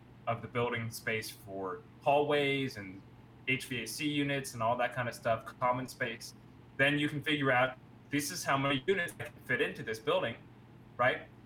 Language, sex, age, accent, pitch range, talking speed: English, male, 30-49, American, 115-135 Hz, 170 wpm